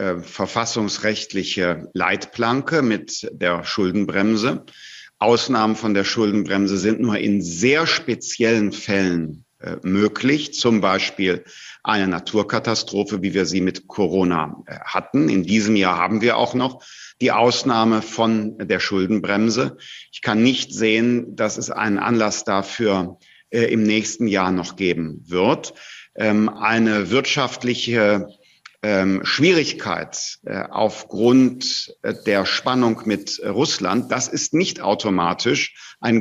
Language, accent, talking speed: German, German, 110 wpm